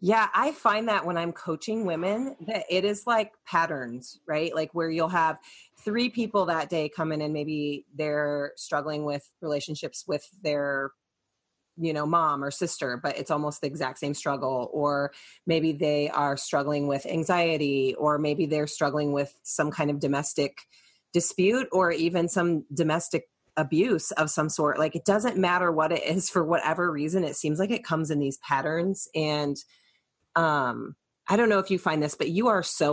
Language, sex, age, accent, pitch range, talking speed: English, female, 30-49, American, 145-175 Hz, 180 wpm